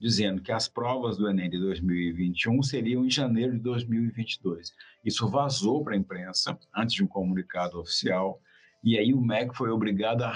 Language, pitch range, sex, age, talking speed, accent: Portuguese, 95-125 Hz, male, 50-69, 175 wpm, Brazilian